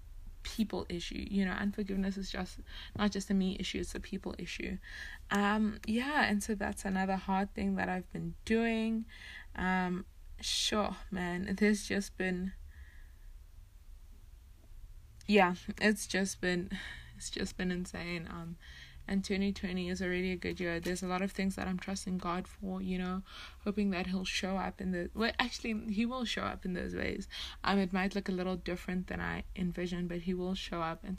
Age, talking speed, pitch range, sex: 20-39, 180 wpm, 175-200 Hz, female